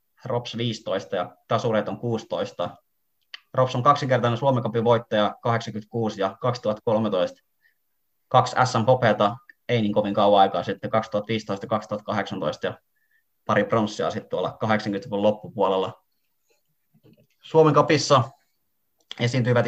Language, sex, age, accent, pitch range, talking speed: Finnish, male, 20-39, native, 105-120 Hz, 100 wpm